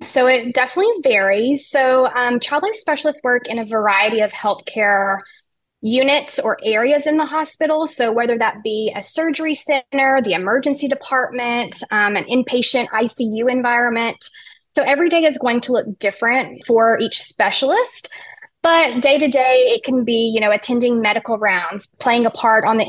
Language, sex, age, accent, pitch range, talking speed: English, female, 20-39, American, 215-270 Hz, 170 wpm